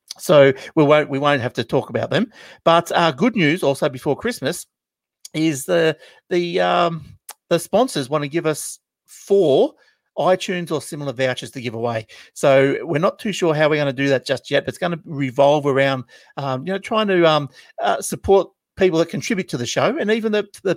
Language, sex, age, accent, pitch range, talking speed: English, male, 50-69, Australian, 130-175 Hz, 210 wpm